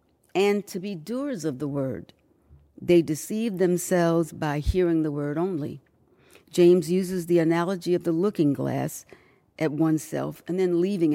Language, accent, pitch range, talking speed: English, American, 150-190 Hz, 150 wpm